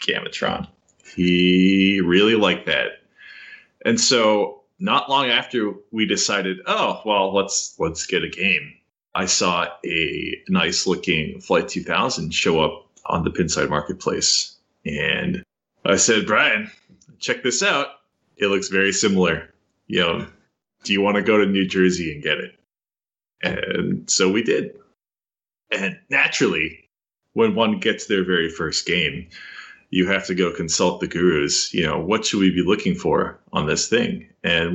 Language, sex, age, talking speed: English, male, 20-39, 150 wpm